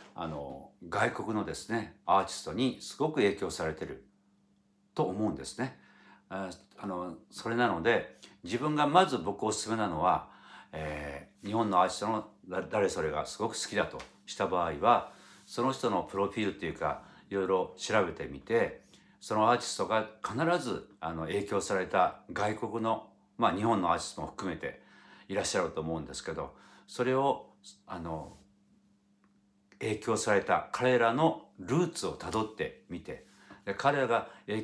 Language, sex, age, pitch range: Japanese, male, 60-79, 95-115 Hz